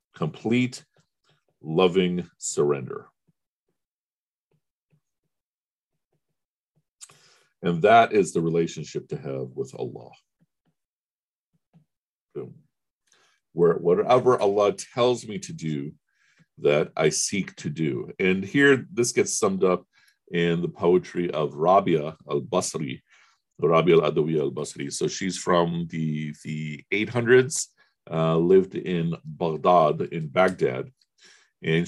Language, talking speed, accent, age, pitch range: English, 100 wpm, American, 50-69, 75-120 Hz